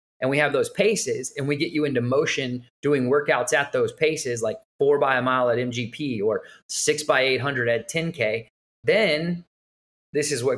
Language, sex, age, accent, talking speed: English, male, 20-39, American, 185 wpm